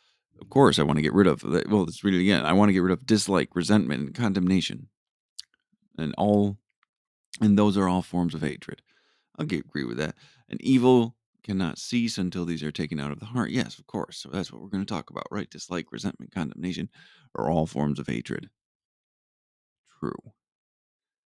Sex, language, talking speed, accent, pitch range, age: male, English, 195 wpm, American, 80-100 Hz, 40-59